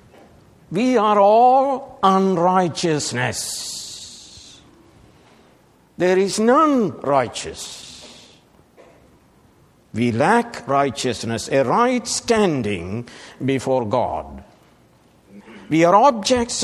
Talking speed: 70 wpm